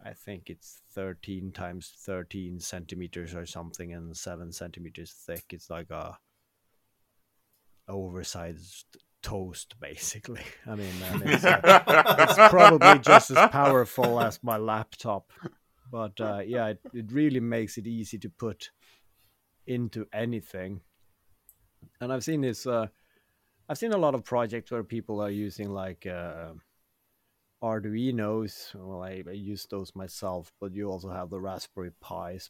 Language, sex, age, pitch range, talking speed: English, male, 30-49, 90-115 Hz, 140 wpm